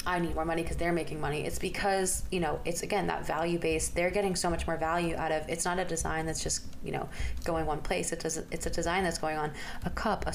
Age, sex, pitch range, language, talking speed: 20-39, female, 160-185 Hz, English, 260 wpm